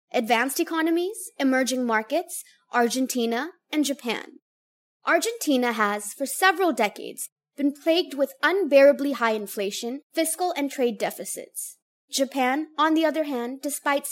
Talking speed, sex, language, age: 120 wpm, female, English, 20-39